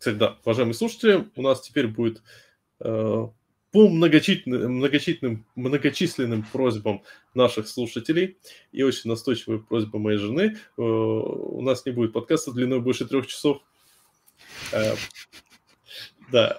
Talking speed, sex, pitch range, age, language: 120 wpm, male, 110-135 Hz, 20-39, Russian